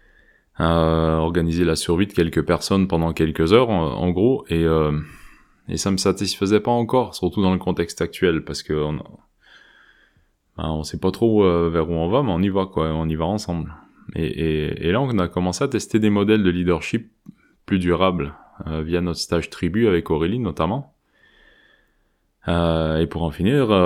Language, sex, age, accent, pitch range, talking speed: French, male, 20-39, French, 80-95 Hz, 190 wpm